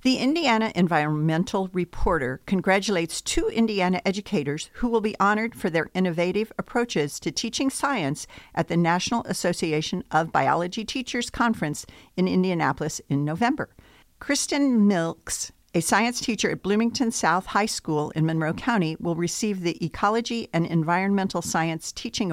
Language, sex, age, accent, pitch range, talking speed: English, female, 50-69, American, 160-220 Hz, 140 wpm